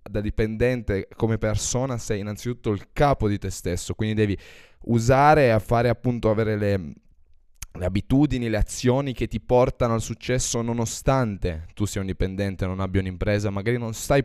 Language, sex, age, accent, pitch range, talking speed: Italian, male, 10-29, native, 95-120 Hz, 165 wpm